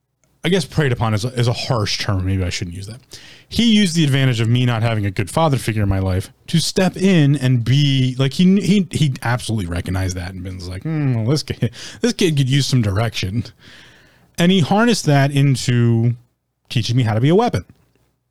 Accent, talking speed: American, 220 wpm